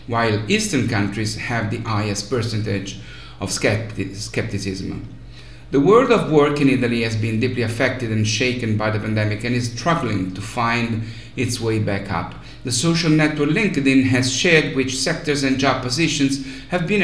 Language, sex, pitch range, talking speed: English, male, 115-145 Hz, 160 wpm